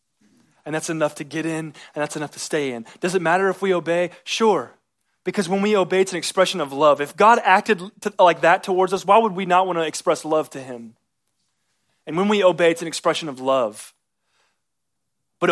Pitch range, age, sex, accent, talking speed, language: 150-190 Hz, 30-49, male, American, 215 wpm, English